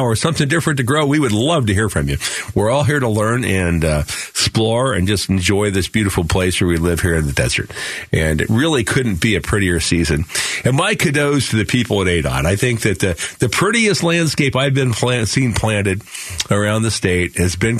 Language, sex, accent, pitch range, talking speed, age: English, male, American, 100-125 Hz, 225 wpm, 50-69